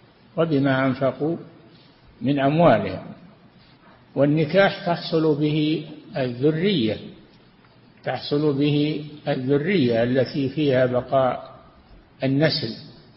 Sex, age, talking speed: male, 60-79, 70 wpm